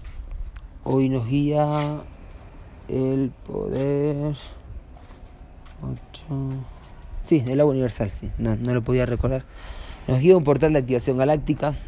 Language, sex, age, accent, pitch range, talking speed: Spanish, male, 20-39, Argentinian, 105-130 Hz, 115 wpm